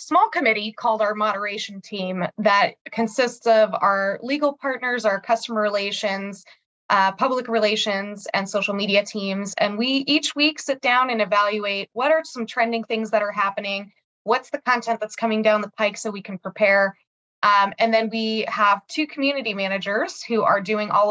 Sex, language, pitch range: female, English, 200-235 Hz